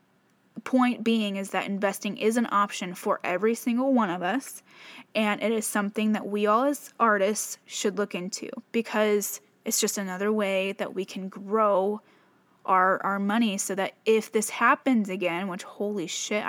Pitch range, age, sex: 200-245 Hz, 10-29, female